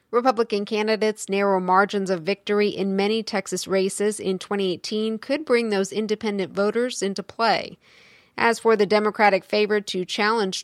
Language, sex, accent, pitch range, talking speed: English, female, American, 195-230 Hz, 145 wpm